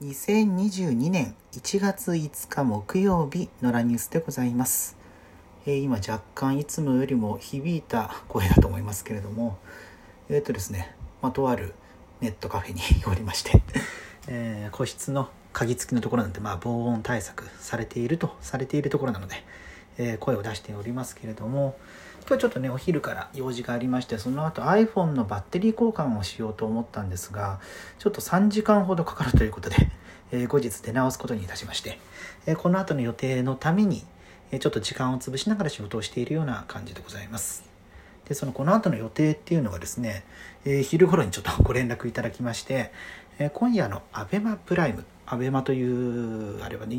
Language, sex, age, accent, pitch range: Japanese, male, 40-59, native, 105-145 Hz